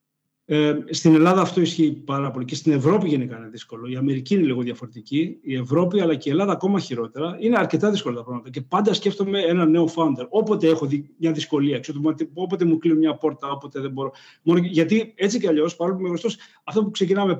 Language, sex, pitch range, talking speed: Greek, male, 145-180 Hz, 210 wpm